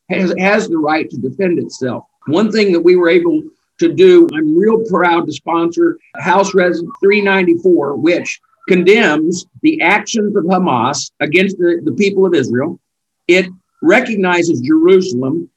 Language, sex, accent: English, male, American